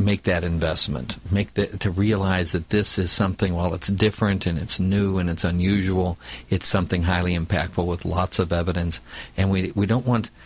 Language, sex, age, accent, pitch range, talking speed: English, male, 50-69, American, 90-105 Hz, 190 wpm